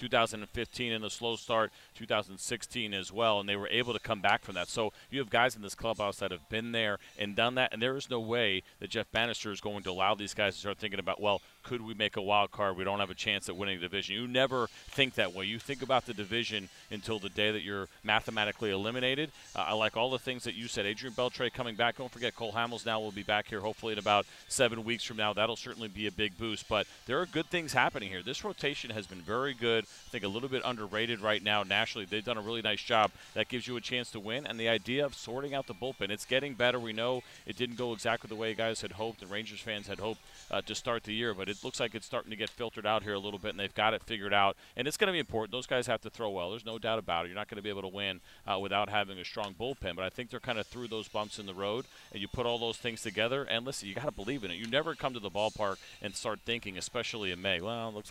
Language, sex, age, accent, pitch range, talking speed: English, male, 40-59, American, 100-120 Hz, 285 wpm